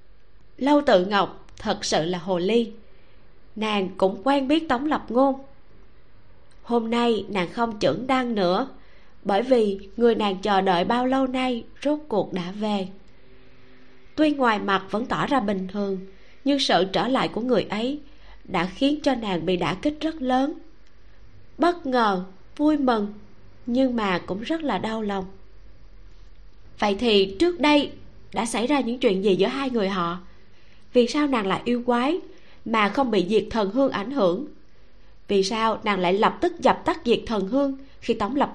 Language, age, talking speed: Vietnamese, 20-39, 175 wpm